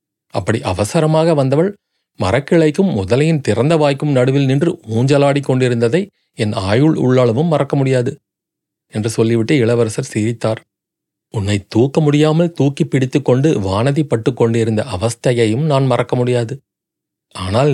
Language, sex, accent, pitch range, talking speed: Tamil, male, native, 115-155 Hz, 110 wpm